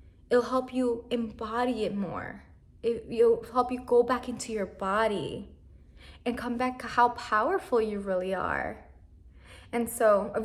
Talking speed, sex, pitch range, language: 150 wpm, female, 215-260 Hz, English